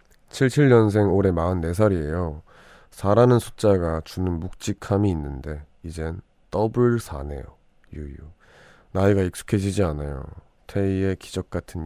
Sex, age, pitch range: male, 20-39, 85-115 Hz